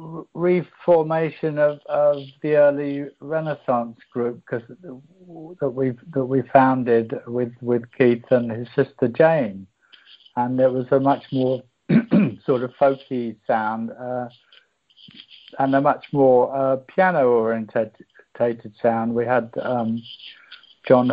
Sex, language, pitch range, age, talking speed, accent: male, English, 115-140 Hz, 60-79, 120 wpm, British